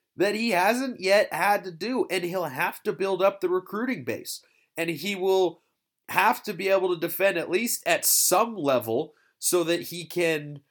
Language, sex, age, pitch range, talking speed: English, male, 30-49, 135-180 Hz, 190 wpm